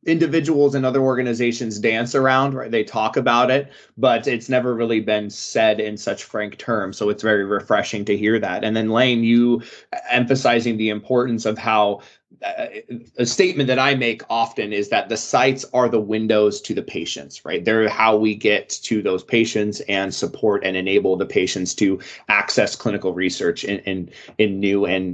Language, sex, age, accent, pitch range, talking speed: English, male, 20-39, American, 105-125 Hz, 185 wpm